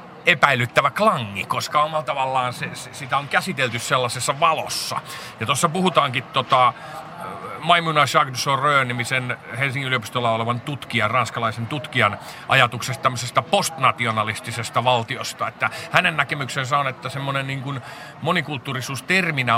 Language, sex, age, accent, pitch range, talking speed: Finnish, male, 40-59, native, 125-150 Hz, 115 wpm